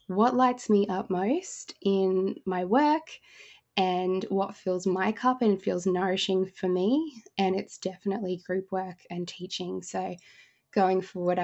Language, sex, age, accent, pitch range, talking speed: English, female, 10-29, Australian, 180-200 Hz, 145 wpm